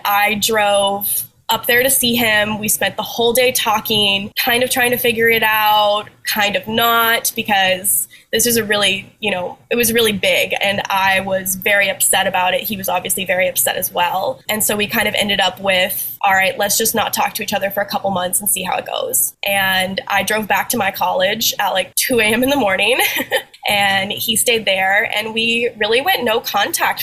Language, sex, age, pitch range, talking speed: English, female, 10-29, 195-240 Hz, 220 wpm